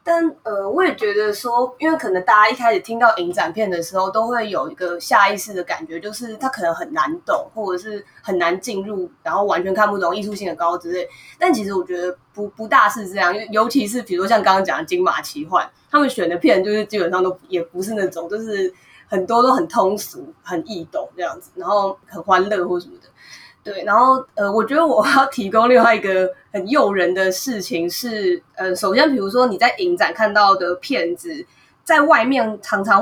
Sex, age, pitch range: female, 20-39, 185-265 Hz